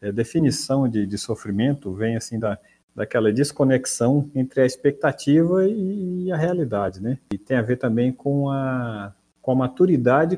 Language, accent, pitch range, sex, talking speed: Portuguese, Brazilian, 115-150 Hz, male, 160 wpm